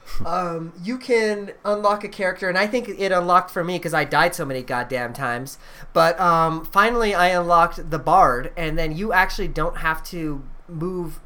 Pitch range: 150-180 Hz